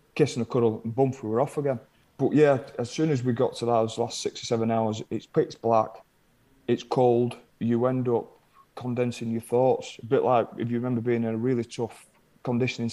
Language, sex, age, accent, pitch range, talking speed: English, male, 30-49, British, 115-130 Hz, 215 wpm